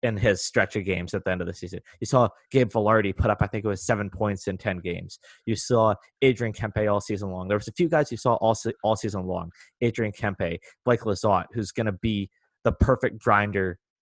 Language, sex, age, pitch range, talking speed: English, male, 20-39, 105-125 Hz, 235 wpm